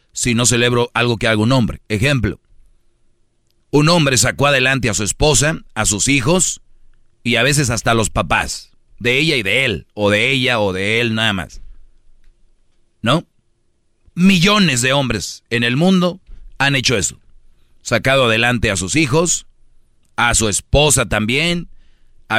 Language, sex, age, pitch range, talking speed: Spanish, male, 40-59, 115-140 Hz, 160 wpm